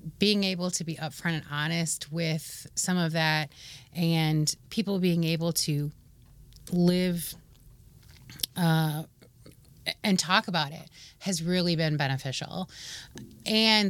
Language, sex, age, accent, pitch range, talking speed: English, female, 30-49, American, 150-180 Hz, 115 wpm